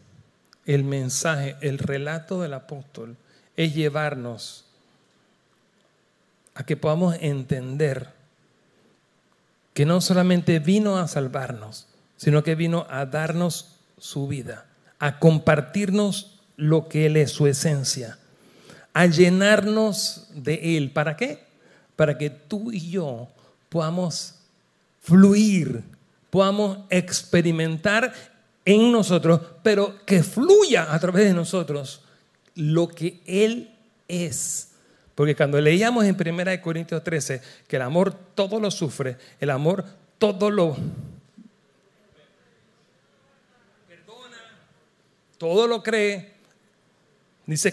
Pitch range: 150-195 Hz